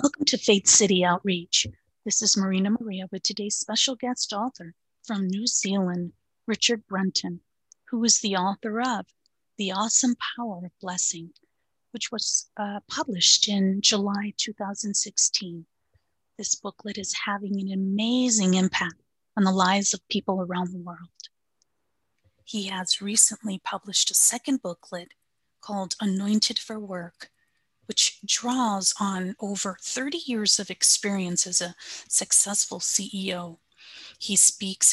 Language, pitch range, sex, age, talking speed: English, 185-215 Hz, female, 30-49, 130 wpm